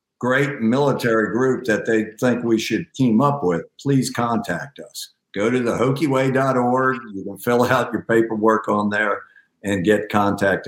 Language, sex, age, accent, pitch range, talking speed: English, male, 50-69, American, 100-125 Hz, 165 wpm